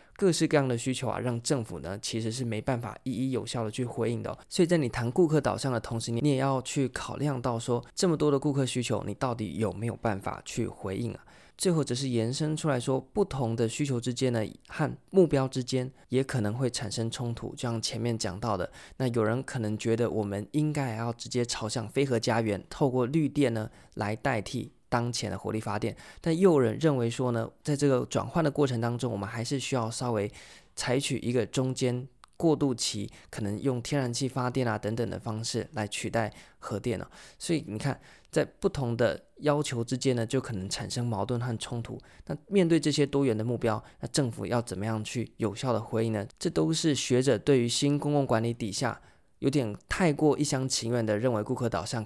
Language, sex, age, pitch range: Chinese, male, 20-39, 110-135 Hz